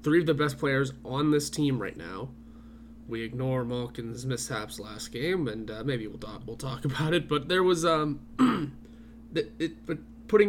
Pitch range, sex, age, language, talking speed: 125-170 Hz, male, 20-39, English, 185 wpm